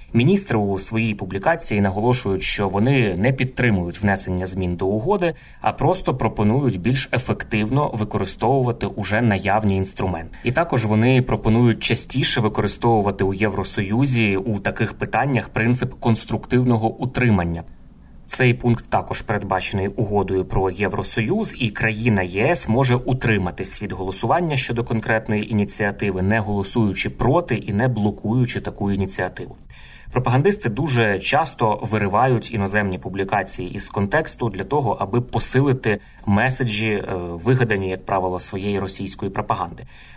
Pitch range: 100-120 Hz